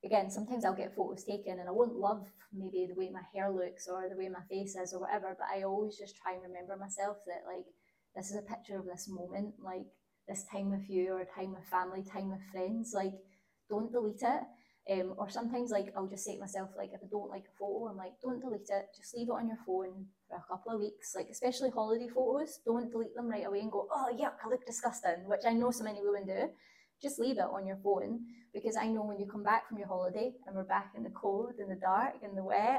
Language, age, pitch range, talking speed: English, 20-39, 190-220 Hz, 255 wpm